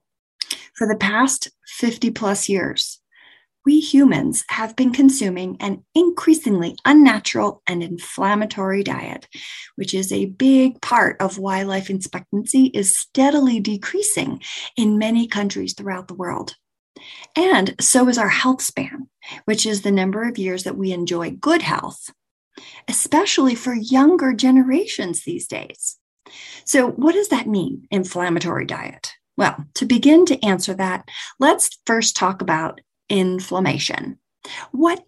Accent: American